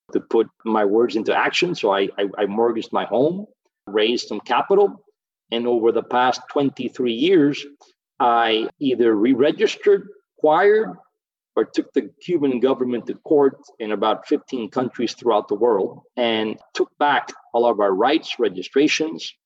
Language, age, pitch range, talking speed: English, 40-59, 120-180 Hz, 150 wpm